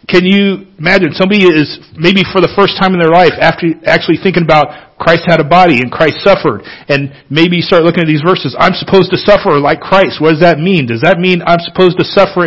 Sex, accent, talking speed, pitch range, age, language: male, American, 230 wpm, 140-185 Hz, 40-59, English